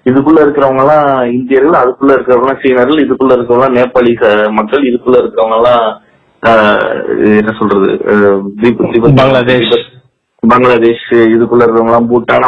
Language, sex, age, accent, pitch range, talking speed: Tamil, male, 30-49, native, 120-160 Hz, 95 wpm